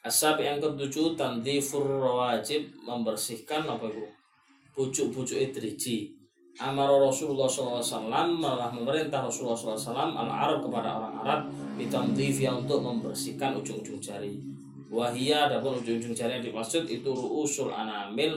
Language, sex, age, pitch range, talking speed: Malay, male, 20-39, 110-145 Hz, 115 wpm